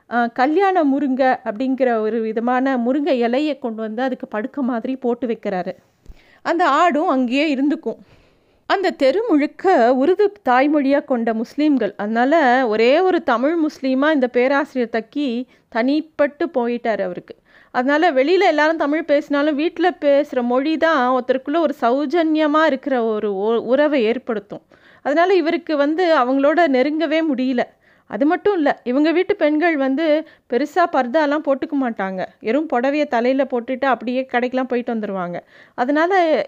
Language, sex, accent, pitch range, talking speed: Tamil, female, native, 245-310 Hz, 125 wpm